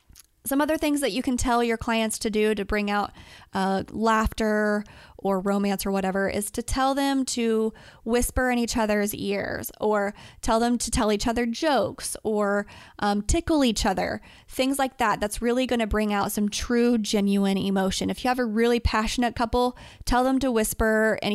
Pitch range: 205-240 Hz